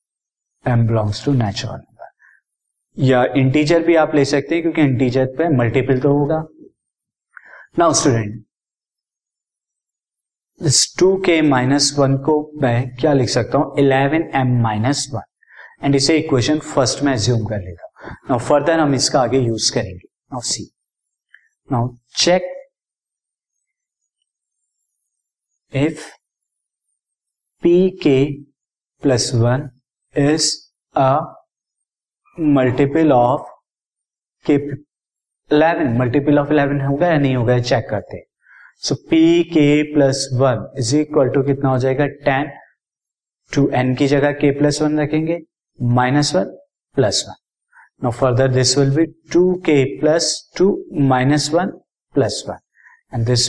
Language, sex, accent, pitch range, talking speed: Hindi, male, native, 130-155 Hz, 120 wpm